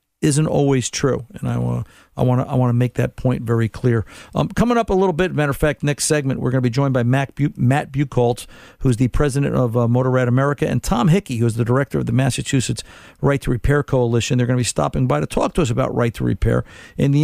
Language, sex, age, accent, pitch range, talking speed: English, male, 50-69, American, 125-145 Hz, 245 wpm